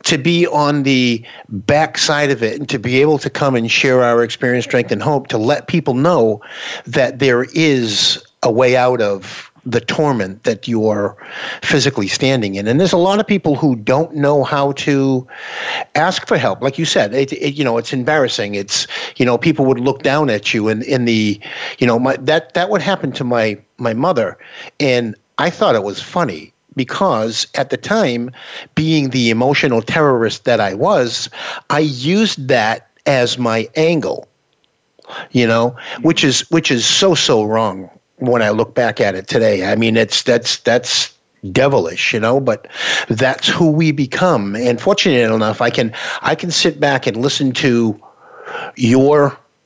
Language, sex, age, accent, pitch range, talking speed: English, male, 50-69, American, 120-155 Hz, 175 wpm